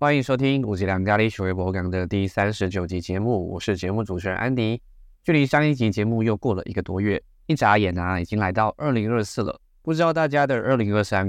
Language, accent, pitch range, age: Chinese, native, 95-125 Hz, 20-39